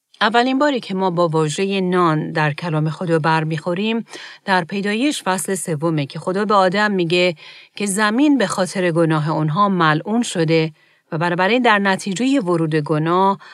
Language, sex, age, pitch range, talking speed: Persian, female, 40-59, 160-205 Hz, 150 wpm